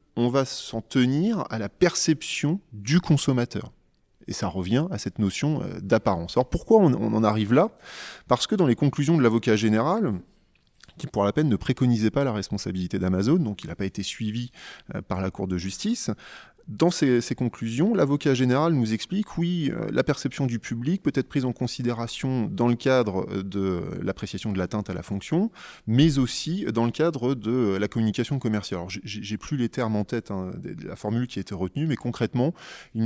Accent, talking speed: French, 195 wpm